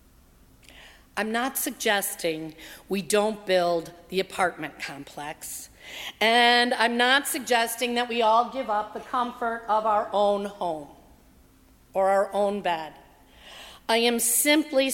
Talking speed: 125 wpm